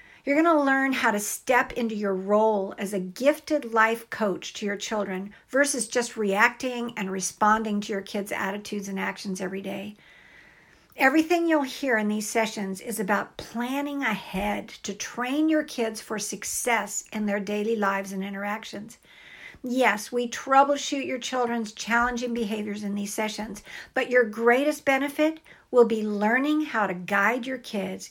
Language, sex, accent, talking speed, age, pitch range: English, female, American, 160 wpm, 50-69, 205-255 Hz